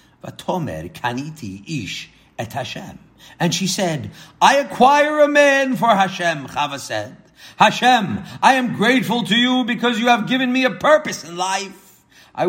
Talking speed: 155 wpm